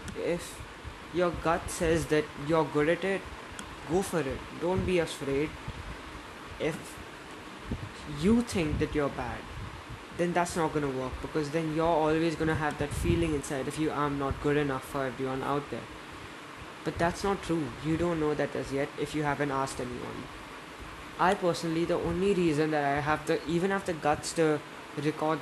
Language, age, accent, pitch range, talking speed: English, 20-39, Indian, 145-165 Hz, 175 wpm